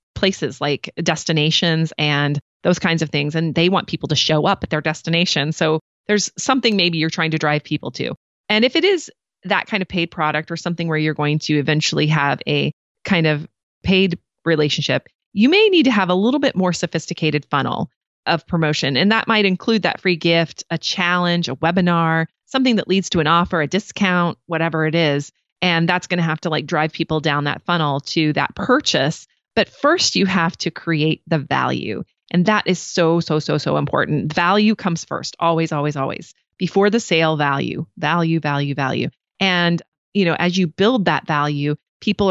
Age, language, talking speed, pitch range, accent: 30-49, English, 195 wpm, 155-185 Hz, American